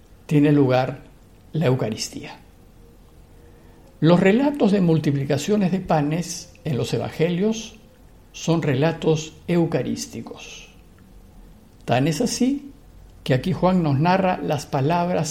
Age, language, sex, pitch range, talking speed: 50-69, Spanish, male, 120-175 Hz, 100 wpm